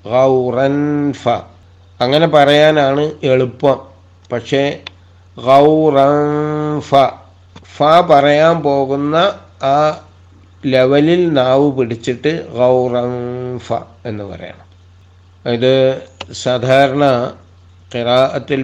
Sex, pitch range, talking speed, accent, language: male, 105-140 Hz, 60 wpm, native, Malayalam